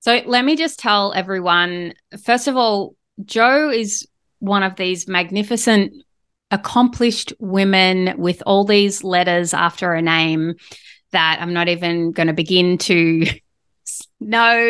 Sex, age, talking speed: female, 20-39, 135 wpm